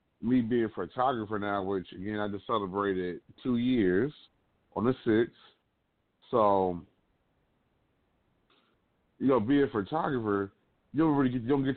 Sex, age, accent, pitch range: male, 30-49, American, 100-120 Hz